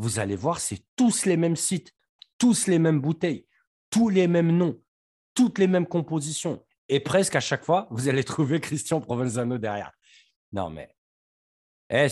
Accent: French